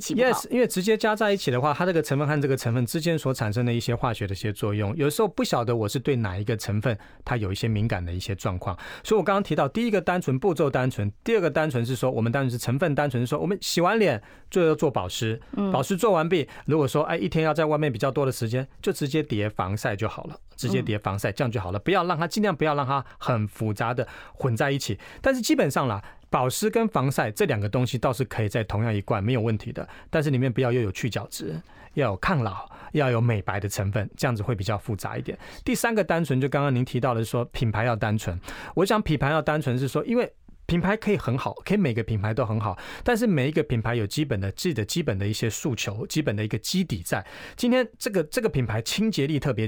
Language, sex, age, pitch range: Chinese, male, 40-59, 110-165 Hz